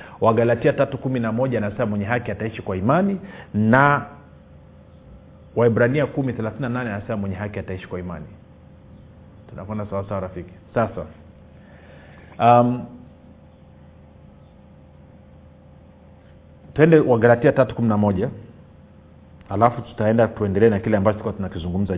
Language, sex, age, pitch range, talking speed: Swahili, male, 40-59, 90-125 Hz, 105 wpm